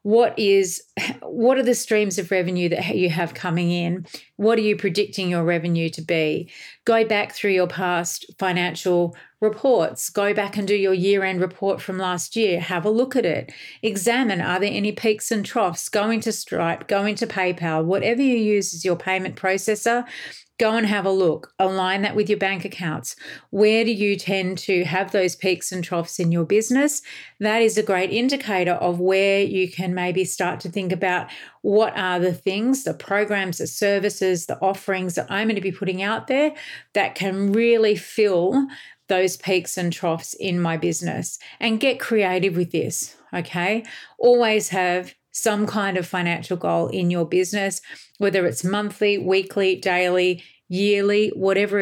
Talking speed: 175 wpm